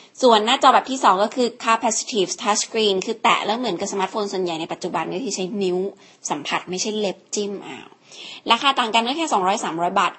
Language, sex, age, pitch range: Thai, female, 20-39, 190-245 Hz